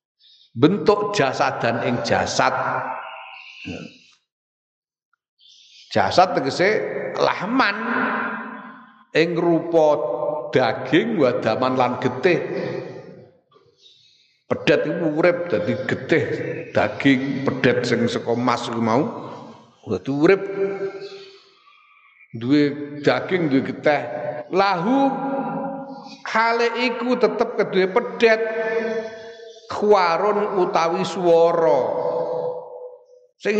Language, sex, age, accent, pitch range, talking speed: Indonesian, male, 50-69, native, 150-235 Hz, 65 wpm